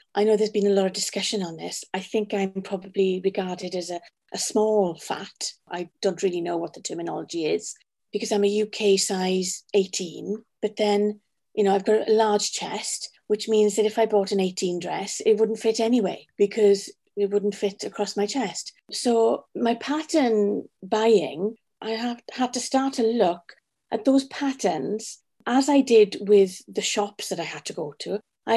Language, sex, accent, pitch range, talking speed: English, female, British, 200-255 Hz, 190 wpm